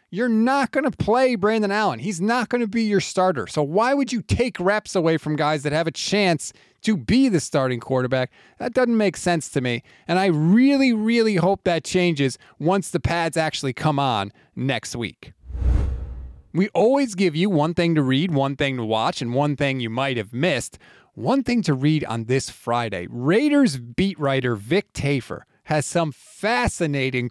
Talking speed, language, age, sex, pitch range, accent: 190 wpm, English, 30-49, male, 130-190 Hz, American